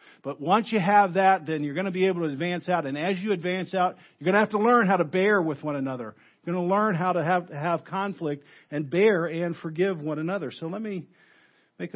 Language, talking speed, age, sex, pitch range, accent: English, 250 wpm, 50-69, male, 135-185 Hz, American